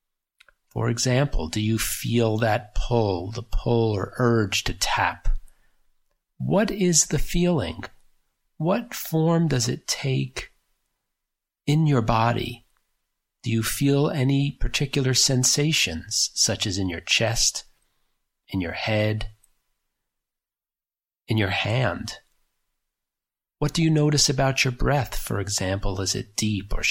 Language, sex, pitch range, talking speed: English, male, 100-135 Hz, 125 wpm